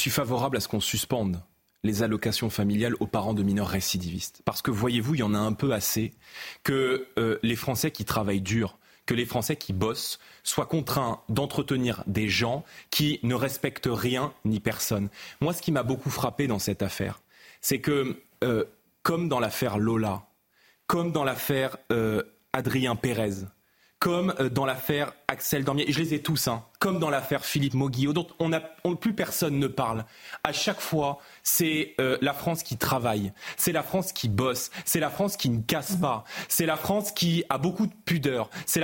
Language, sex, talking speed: French, male, 190 wpm